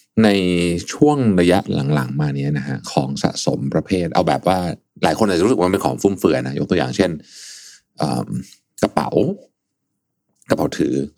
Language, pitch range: Thai, 70-95 Hz